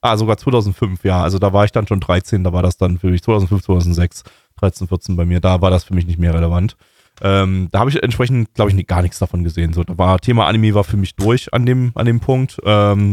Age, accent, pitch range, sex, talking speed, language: 20-39, German, 100-120 Hz, male, 260 wpm, German